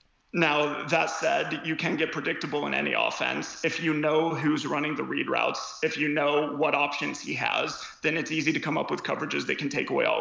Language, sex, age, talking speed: English, male, 30-49, 225 wpm